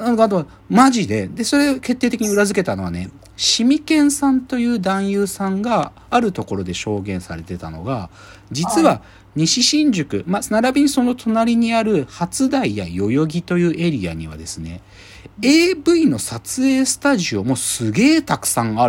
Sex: male